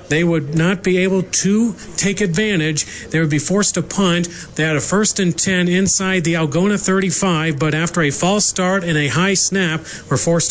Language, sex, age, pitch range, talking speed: English, male, 40-59, 150-175 Hz, 200 wpm